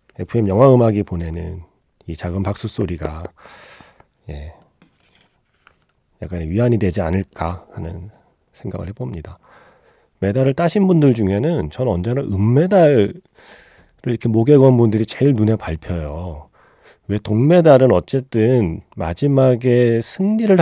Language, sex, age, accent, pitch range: Korean, male, 40-59, native, 90-125 Hz